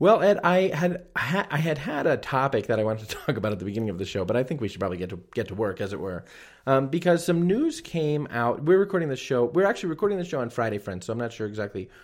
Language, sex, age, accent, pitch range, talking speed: English, male, 30-49, American, 100-145 Hz, 295 wpm